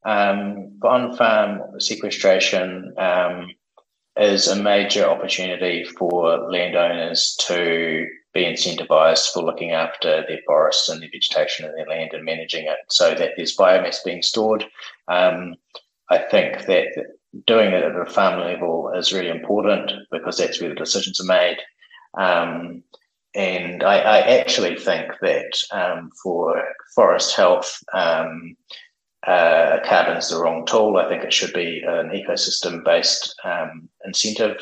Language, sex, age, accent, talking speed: English, male, 30-49, Australian, 135 wpm